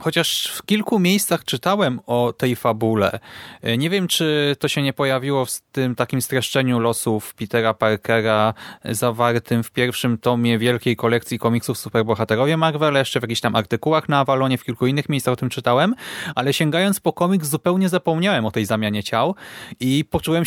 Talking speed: 165 wpm